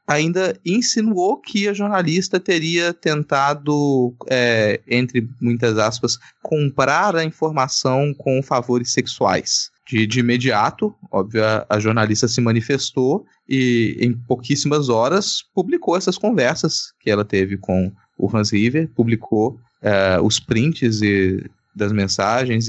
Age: 20-39